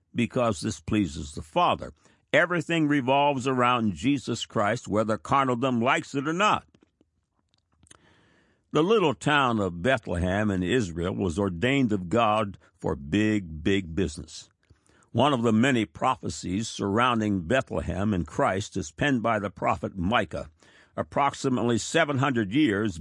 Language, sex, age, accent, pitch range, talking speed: English, male, 60-79, American, 100-130 Hz, 130 wpm